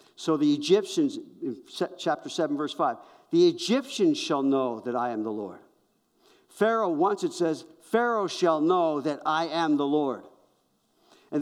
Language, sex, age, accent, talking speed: English, male, 50-69, American, 150 wpm